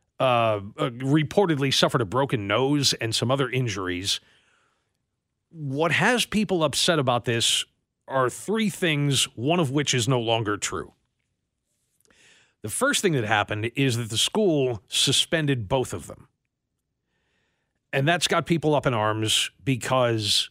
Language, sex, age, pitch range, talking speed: English, male, 40-59, 120-165 Hz, 140 wpm